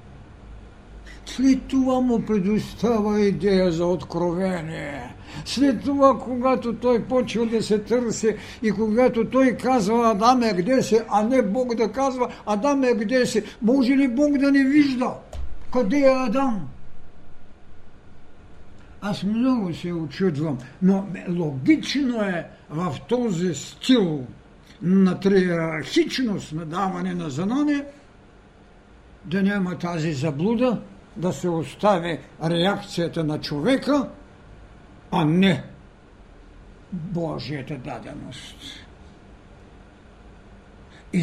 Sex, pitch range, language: male, 145-230 Hz, Bulgarian